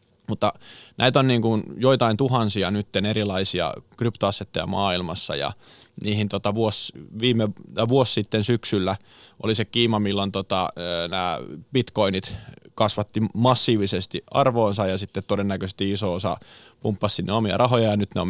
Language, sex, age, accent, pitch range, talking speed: Finnish, male, 20-39, native, 100-115 Hz, 140 wpm